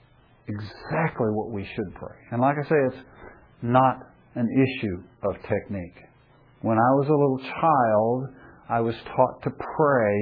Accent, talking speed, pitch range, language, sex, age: American, 155 wpm, 120-165 Hz, English, male, 60-79